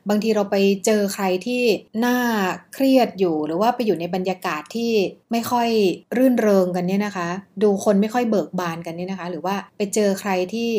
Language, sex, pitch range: Thai, female, 180-225 Hz